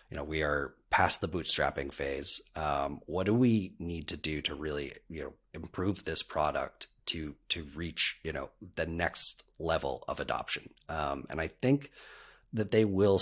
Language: English